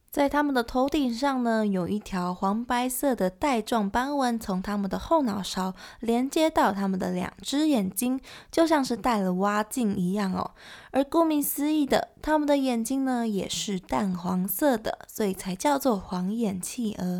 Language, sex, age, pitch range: Chinese, female, 20-39, 195-260 Hz